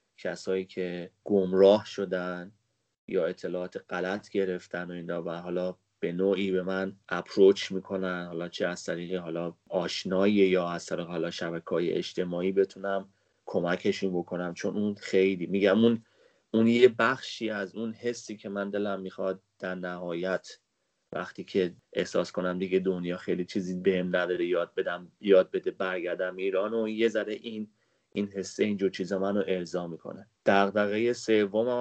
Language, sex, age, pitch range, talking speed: Persian, male, 30-49, 90-105 Hz, 145 wpm